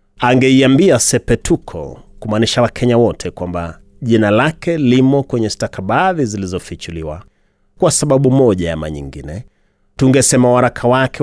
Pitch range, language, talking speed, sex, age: 95-125 Hz, Swahili, 110 wpm, male, 30-49